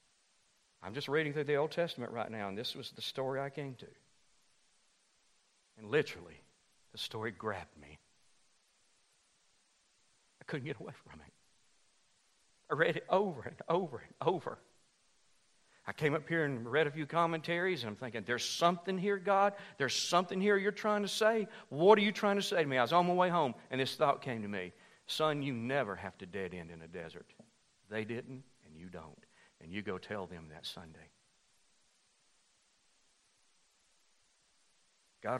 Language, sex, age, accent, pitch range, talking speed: English, male, 60-79, American, 110-145 Hz, 175 wpm